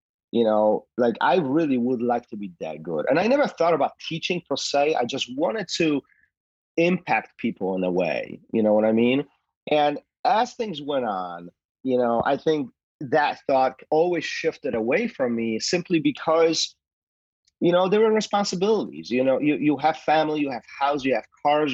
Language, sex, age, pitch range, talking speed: English, male, 30-49, 120-170 Hz, 190 wpm